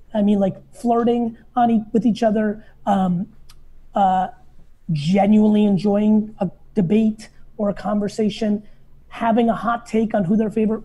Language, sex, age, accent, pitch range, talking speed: English, female, 30-49, American, 190-240 Hz, 135 wpm